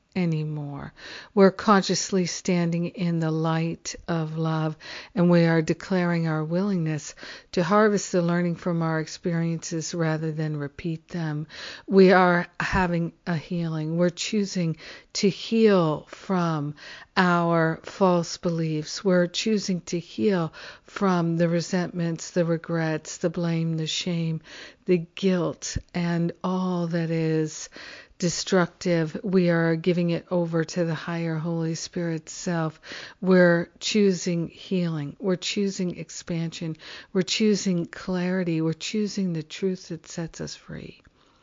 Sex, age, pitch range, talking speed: female, 50-69, 165-185 Hz, 125 wpm